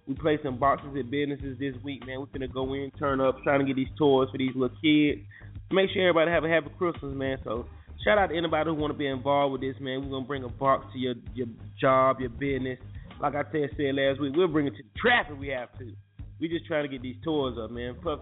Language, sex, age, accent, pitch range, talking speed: English, male, 20-39, American, 125-150 Hz, 275 wpm